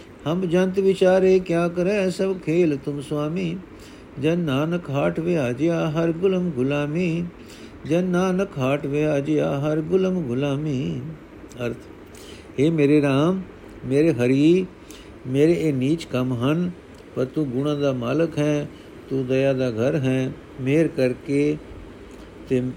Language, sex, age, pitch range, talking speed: Punjabi, male, 50-69, 135-160 Hz, 130 wpm